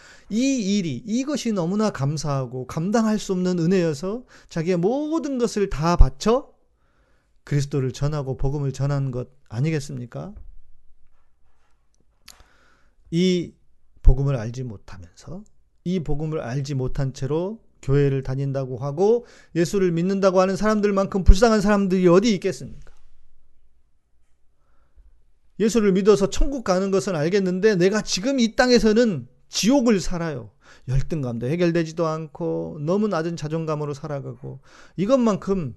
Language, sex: Korean, male